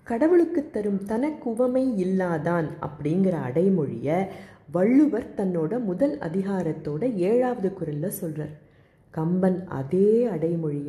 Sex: female